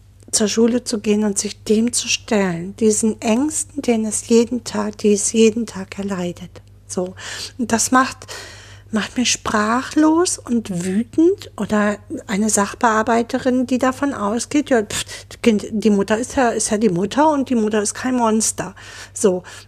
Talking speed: 160 wpm